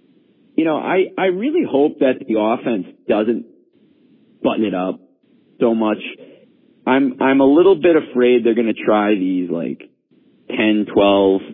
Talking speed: 150 wpm